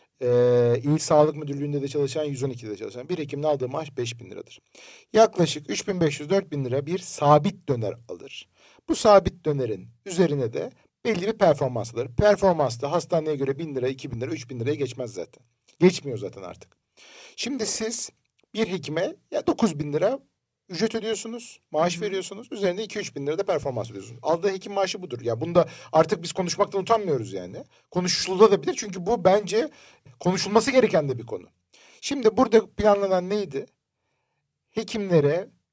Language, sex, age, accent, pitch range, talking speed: Turkish, male, 50-69, native, 140-210 Hz, 165 wpm